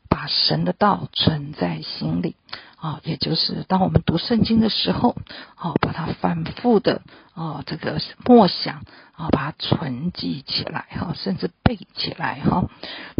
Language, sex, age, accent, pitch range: Chinese, female, 50-69, native, 150-215 Hz